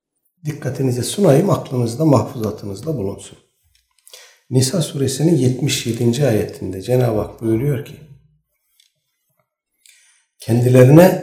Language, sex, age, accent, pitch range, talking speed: Turkish, male, 60-79, native, 115-150 Hz, 75 wpm